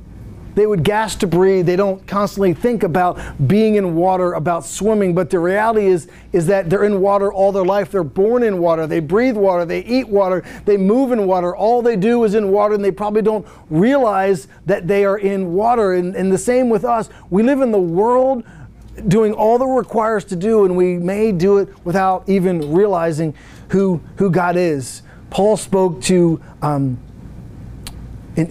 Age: 40-59